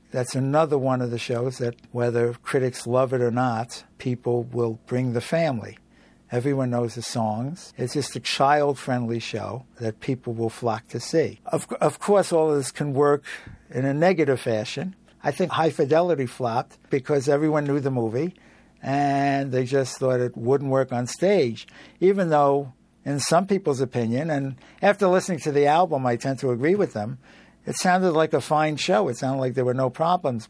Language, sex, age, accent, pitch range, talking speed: English, male, 60-79, American, 125-150 Hz, 185 wpm